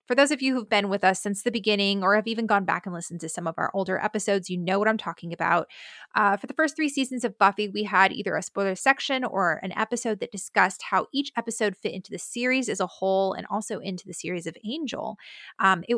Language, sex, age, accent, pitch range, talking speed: English, female, 20-39, American, 190-225 Hz, 255 wpm